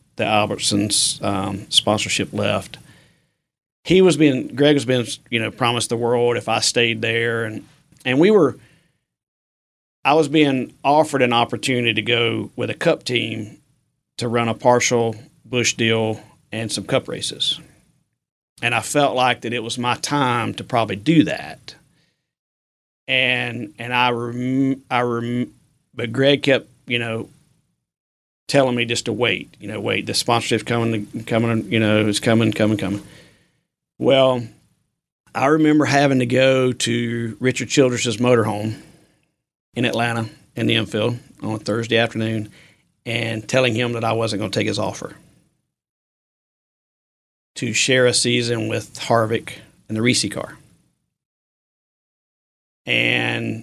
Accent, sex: American, male